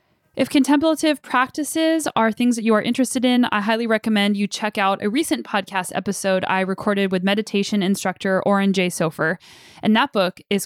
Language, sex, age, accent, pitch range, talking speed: English, female, 10-29, American, 190-230 Hz, 180 wpm